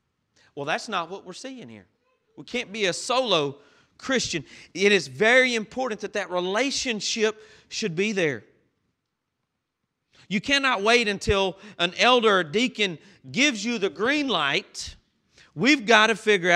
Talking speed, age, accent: 145 wpm, 40-59, American